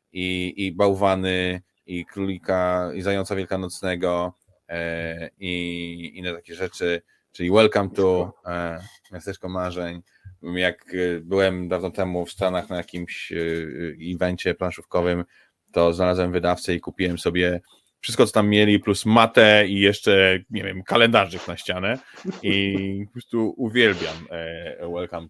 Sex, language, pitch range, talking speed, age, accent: male, Polish, 90-110 Hz, 120 wpm, 20-39, native